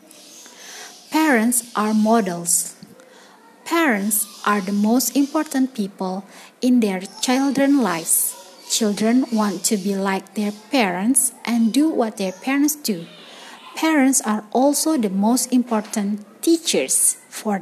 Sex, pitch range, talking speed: female, 210-270 Hz, 115 wpm